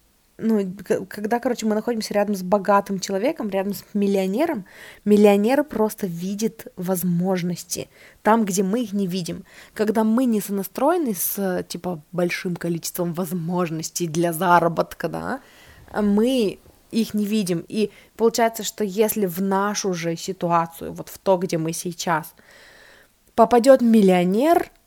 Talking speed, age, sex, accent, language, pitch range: 130 wpm, 20-39, female, native, Russian, 180-225 Hz